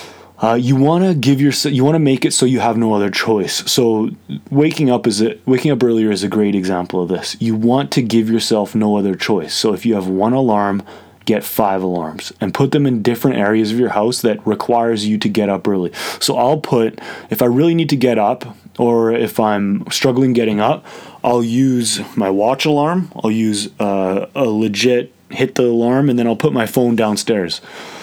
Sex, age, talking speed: male, 20-39, 210 wpm